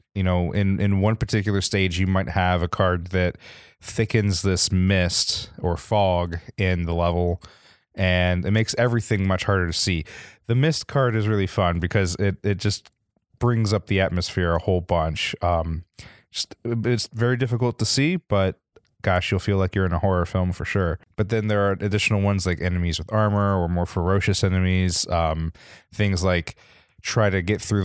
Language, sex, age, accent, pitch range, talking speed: English, male, 20-39, American, 90-105 Hz, 185 wpm